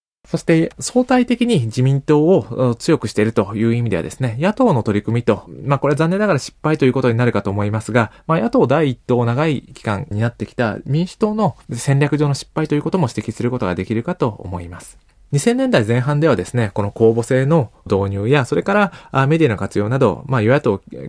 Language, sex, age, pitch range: Japanese, male, 20-39, 110-155 Hz